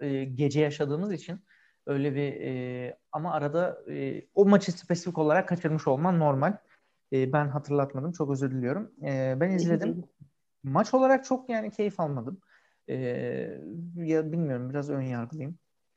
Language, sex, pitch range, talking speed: Turkish, male, 135-160 Hz, 135 wpm